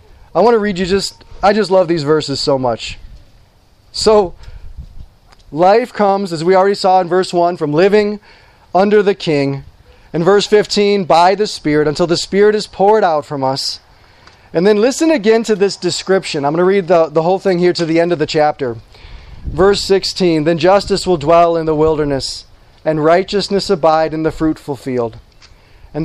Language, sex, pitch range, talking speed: English, male, 140-190 Hz, 185 wpm